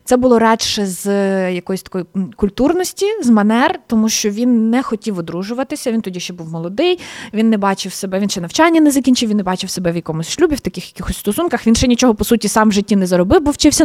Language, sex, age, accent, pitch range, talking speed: Ukrainian, female, 20-39, native, 190-245 Hz, 225 wpm